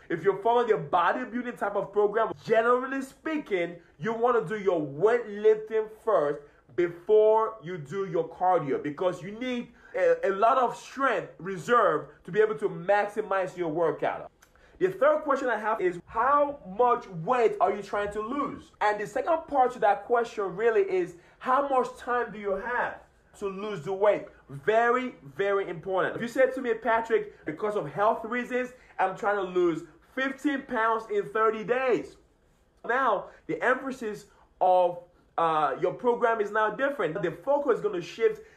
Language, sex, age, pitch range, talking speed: English, male, 30-49, 185-245 Hz, 170 wpm